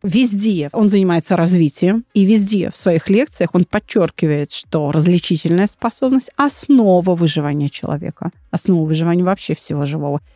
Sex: female